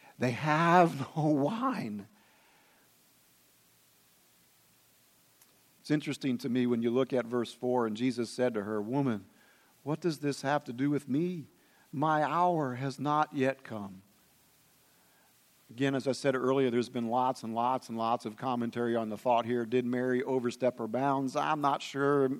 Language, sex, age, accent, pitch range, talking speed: English, male, 50-69, American, 125-150 Hz, 160 wpm